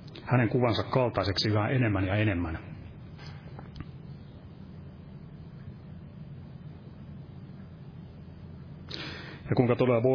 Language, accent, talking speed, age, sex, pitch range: Finnish, native, 65 wpm, 30-49, male, 105-135 Hz